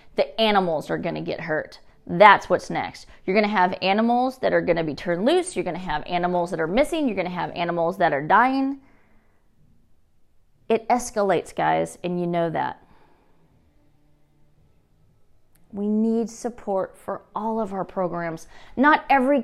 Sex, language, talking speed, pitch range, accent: female, English, 170 wpm, 180-240 Hz, American